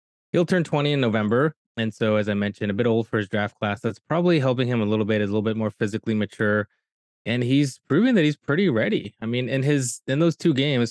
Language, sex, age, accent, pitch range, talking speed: English, male, 20-39, American, 100-130 Hz, 250 wpm